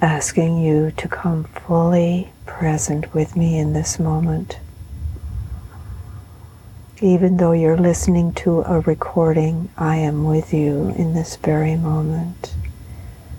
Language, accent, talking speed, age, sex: English, American, 115 wpm, 60-79, female